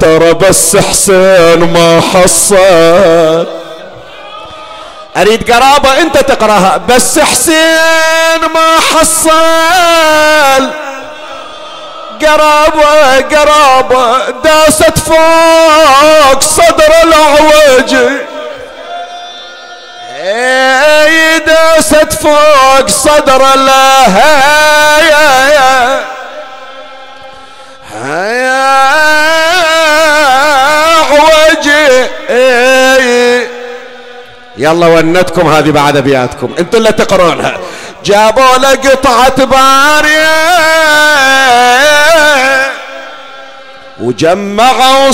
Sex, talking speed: male, 50 wpm